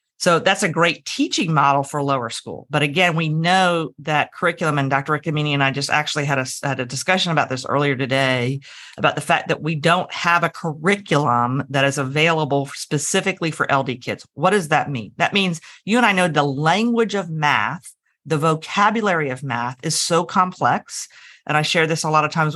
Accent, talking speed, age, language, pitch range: American, 200 wpm, 40-59, English, 140-185 Hz